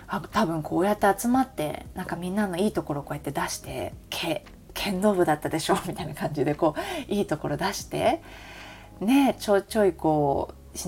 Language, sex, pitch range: Japanese, female, 145-205 Hz